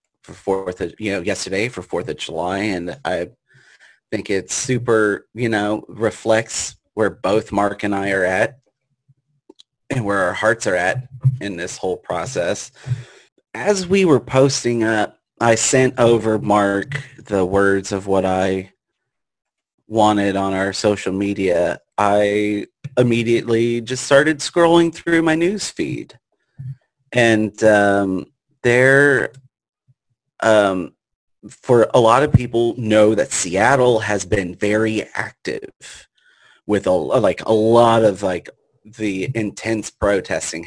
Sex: male